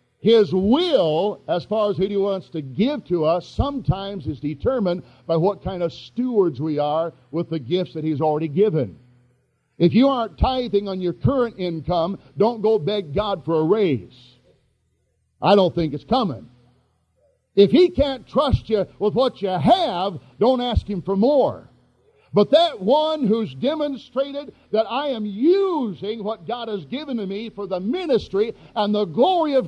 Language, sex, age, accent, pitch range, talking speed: English, male, 50-69, American, 160-250 Hz, 170 wpm